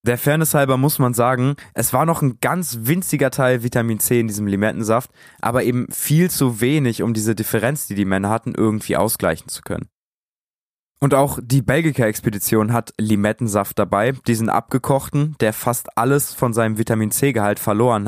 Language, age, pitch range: German, 20-39, 110-135 Hz